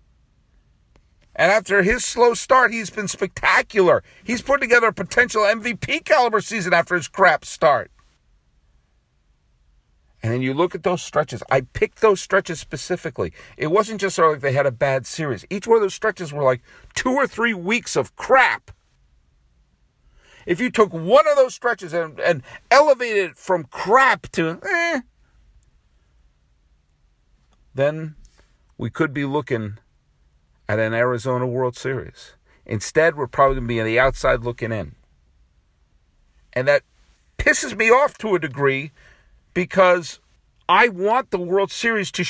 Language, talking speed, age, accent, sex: English, 150 wpm, 50-69, American, male